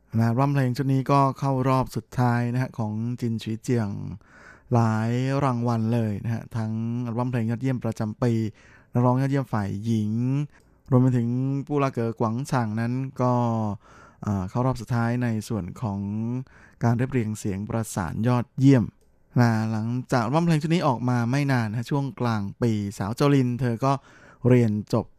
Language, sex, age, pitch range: Thai, male, 20-39, 110-130 Hz